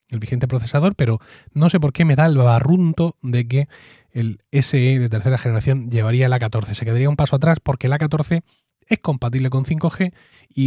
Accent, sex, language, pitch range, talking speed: Spanish, male, Spanish, 115-145 Hz, 195 wpm